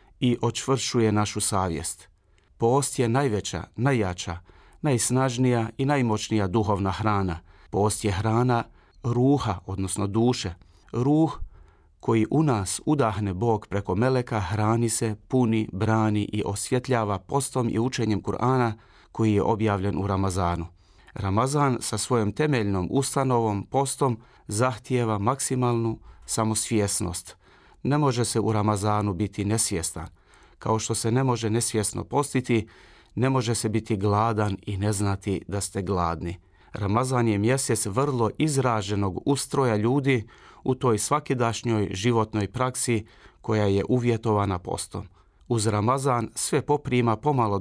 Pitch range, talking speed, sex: 100-125 Hz, 120 wpm, male